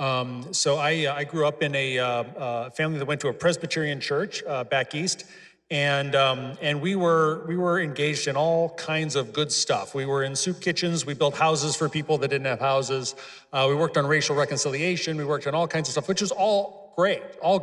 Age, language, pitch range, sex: 40-59, English, 130-160 Hz, male